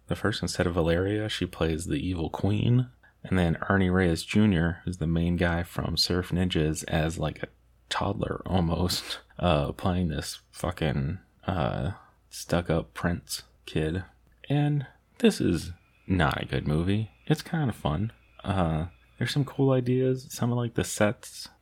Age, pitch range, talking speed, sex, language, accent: 30-49, 80-95 Hz, 155 wpm, male, English, American